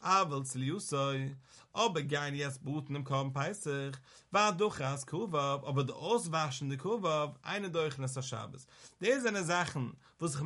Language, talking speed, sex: English, 100 wpm, male